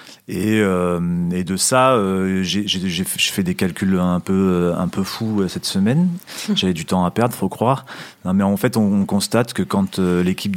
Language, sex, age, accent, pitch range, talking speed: French, male, 40-59, French, 90-120 Hz, 220 wpm